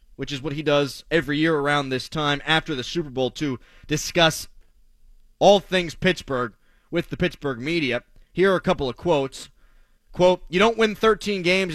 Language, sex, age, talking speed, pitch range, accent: English, male, 30-49, 180 wpm, 135-185 Hz, American